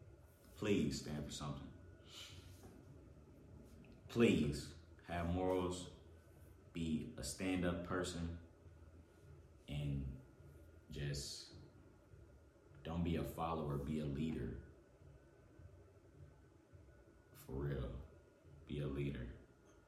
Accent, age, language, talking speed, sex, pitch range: American, 30-49, English, 75 wpm, male, 80-120 Hz